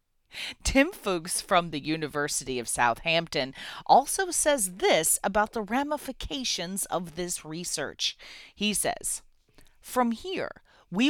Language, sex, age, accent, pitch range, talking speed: English, female, 30-49, American, 160-230 Hz, 115 wpm